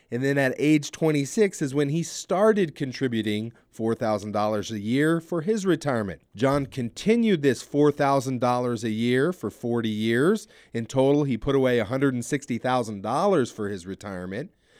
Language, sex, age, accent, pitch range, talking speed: English, male, 40-59, American, 125-170 Hz, 140 wpm